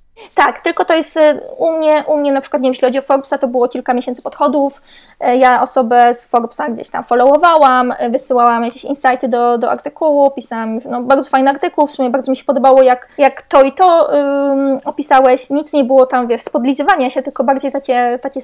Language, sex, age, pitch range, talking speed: Polish, female, 20-39, 255-295 Hz, 205 wpm